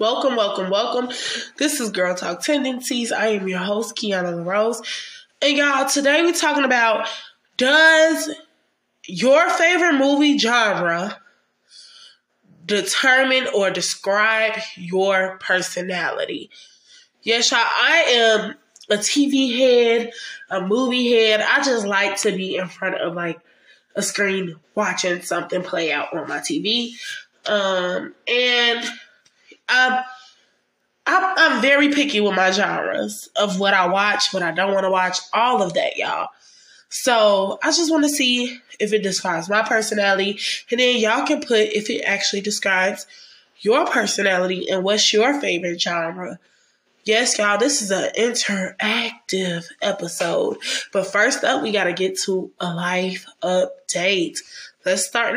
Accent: American